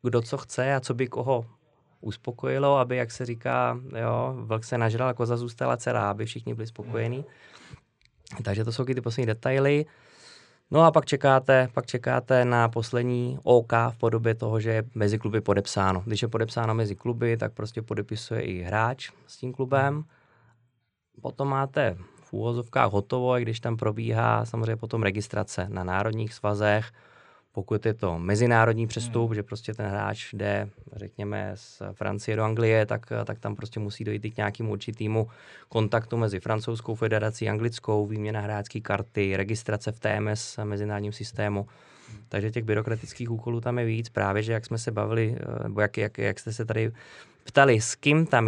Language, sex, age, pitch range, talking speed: Czech, male, 20-39, 110-125 Hz, 170 wpm